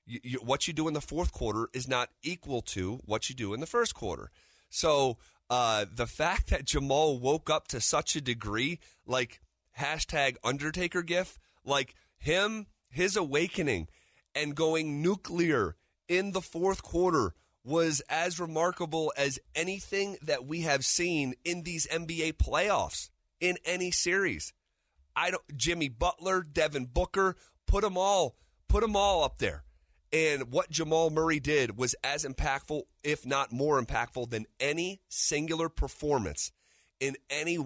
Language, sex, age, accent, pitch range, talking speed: English, male, 30-49, American, 120-165 Hz, 150 wpm